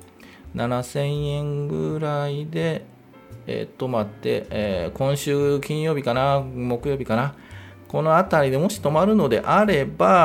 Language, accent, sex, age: Japanese, native, male, 40-59